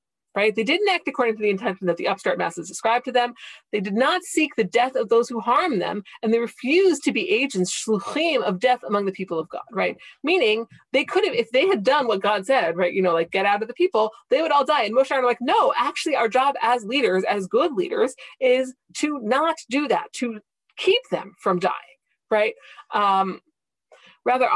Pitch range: 220-360 Hz